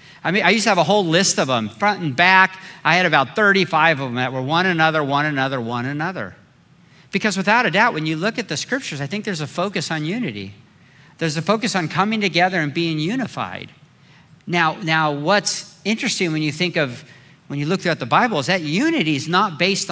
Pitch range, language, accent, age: 145-185 Hz, English, American, 50-69